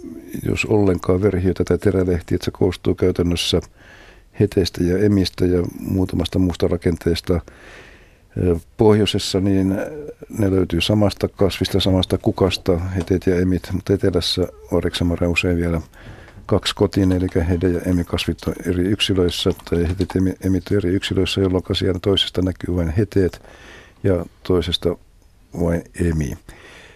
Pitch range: 85-100 Hz